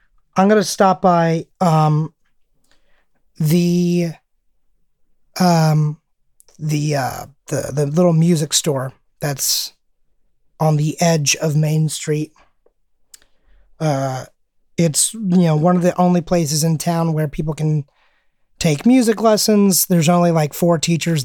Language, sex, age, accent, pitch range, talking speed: English, male, 30-49, American, 145-175 Hz, 125 wpm